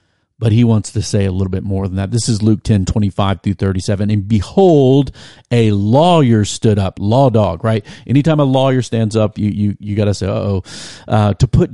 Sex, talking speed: male, 220 wpm